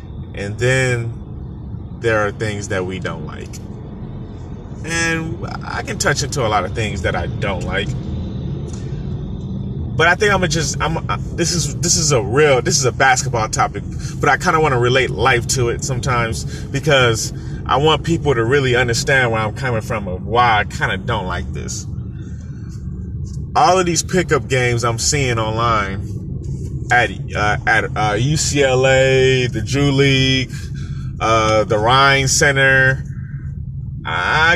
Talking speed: 160 wpm